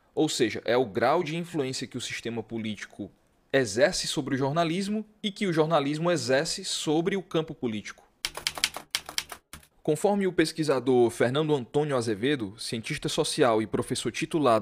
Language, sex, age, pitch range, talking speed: Portuguese, male, 20-39, 115-155 Hz, 145 wpm